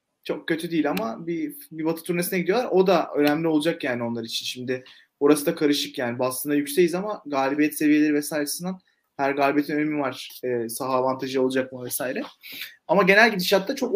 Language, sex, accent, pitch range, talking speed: Turkish, male, native, 140-185 Hz, 175 wpm